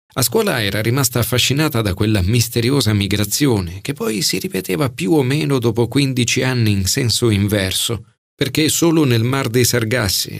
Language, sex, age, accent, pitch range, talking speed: Italian, male, 40-59, native, 105-135 Hz, 160 wpm